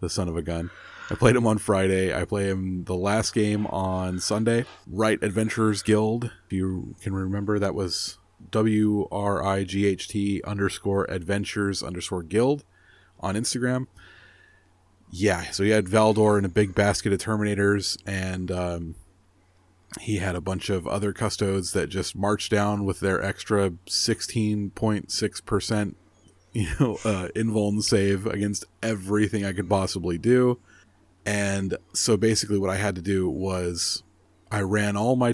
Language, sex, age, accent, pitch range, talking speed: English, male, 30-49, American, 95-105 Hz, 155 wpm